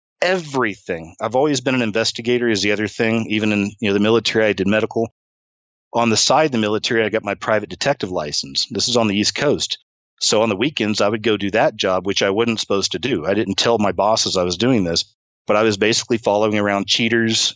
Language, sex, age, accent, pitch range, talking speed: English, male, 40-59, American, 105-130 Hz, 235 wpm